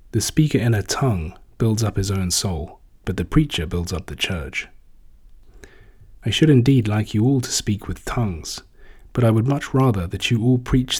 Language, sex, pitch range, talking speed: English, male, 100-130 Hz, 195 wpm